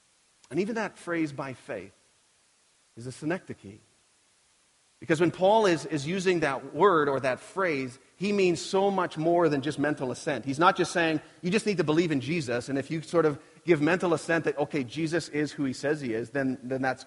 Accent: American